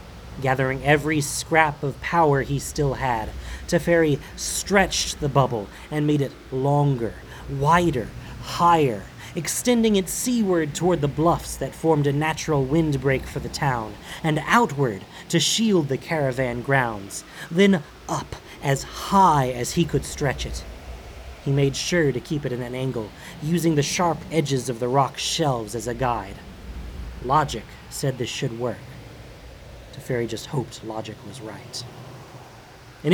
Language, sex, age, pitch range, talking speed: English, male, 30-49, 120-155 Hz, 145 wpm